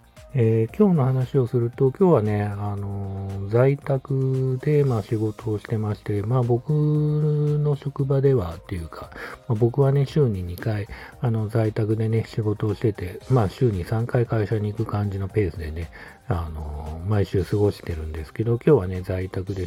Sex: male